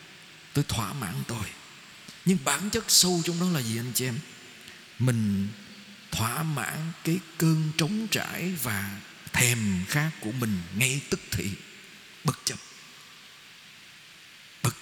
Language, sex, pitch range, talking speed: Vietnamese, male, 115-160 Hz, 135 wpm